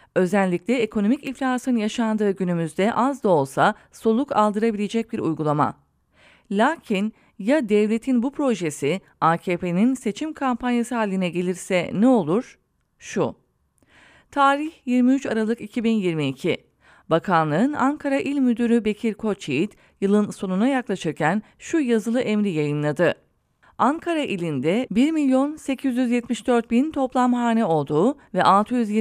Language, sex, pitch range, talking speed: English, female, 190-250 Hz, 100 wpm